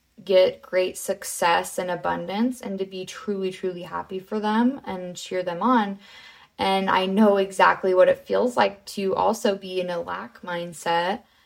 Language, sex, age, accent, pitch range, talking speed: English, female, 20-39, American, 180-225 Hz, 170 wpm